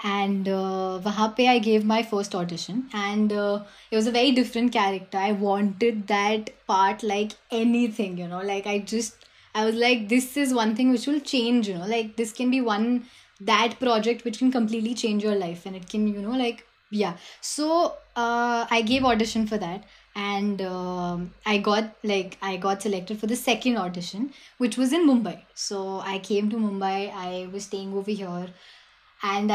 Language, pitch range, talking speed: Hindi, 200-245 Hz, 190 wpm